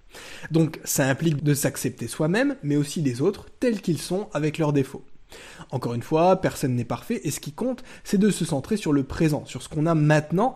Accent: French